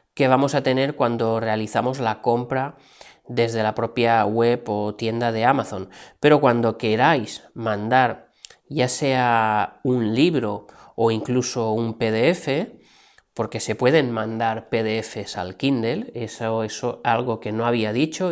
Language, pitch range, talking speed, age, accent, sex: Spanish, 110-135 Hz, 140 wpm, 30-49, Spanish, male